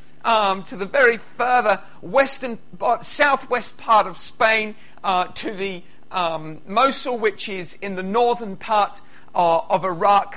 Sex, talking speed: male, 140 wpm